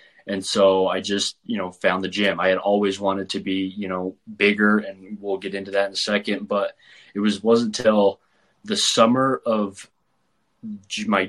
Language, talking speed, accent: English, 185 wpm, American